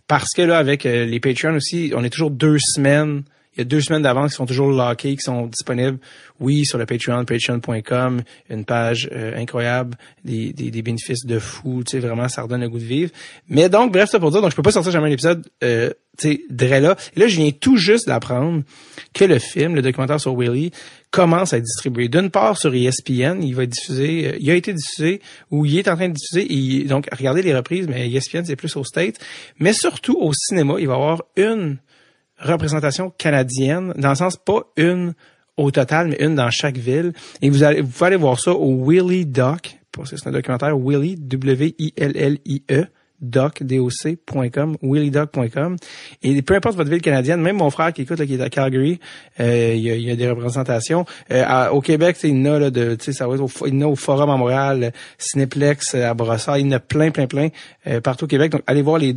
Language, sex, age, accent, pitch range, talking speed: English, male, 30-49, Canadian, 130-160 Hz, 225 wpm